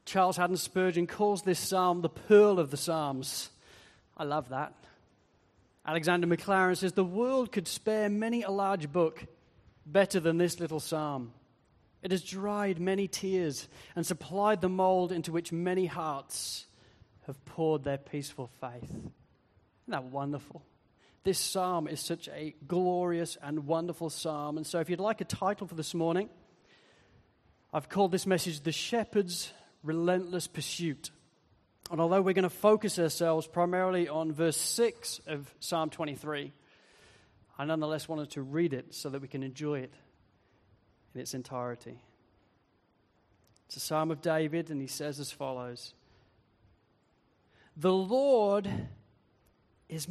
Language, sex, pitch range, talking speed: English, male, 130-185 Hz, 145 wpm